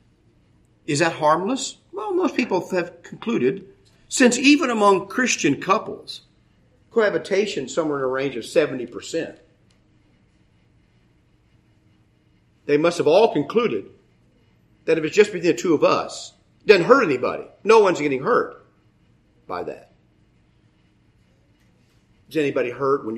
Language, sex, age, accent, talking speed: English, male, 50-69, American, 130 wpm